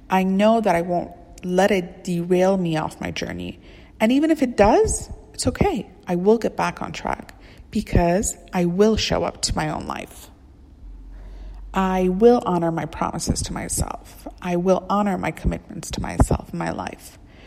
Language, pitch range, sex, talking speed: English, 175-210 Hz, female, 175 wpm